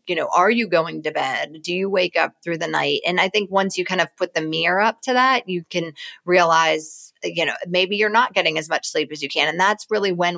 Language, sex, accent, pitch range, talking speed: English, female, American, 165-200 Hz, 265 wpm